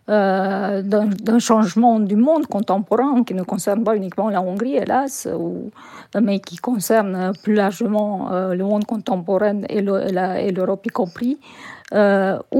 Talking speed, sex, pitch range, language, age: 160 wpm, female, 195-240 Hz, French, 50-69